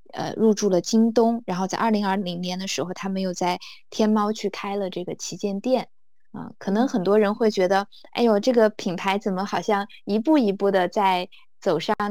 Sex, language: female, Chinese